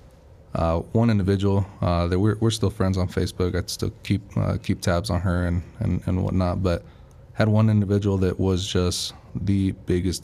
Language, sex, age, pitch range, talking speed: English, male, 20-39, 90-105 Hz, 190 wpm